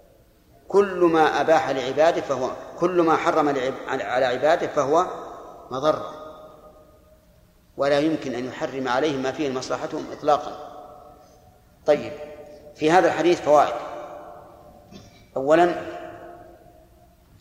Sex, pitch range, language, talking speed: male, 140-165 Hz, Arabic, 95 wpm